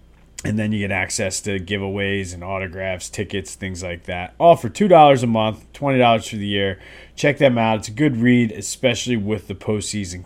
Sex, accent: male, American